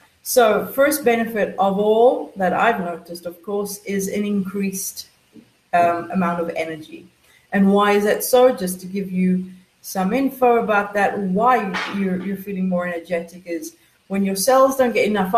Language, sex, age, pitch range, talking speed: English, female, 40-59, 185-245 Hz, 170 wpm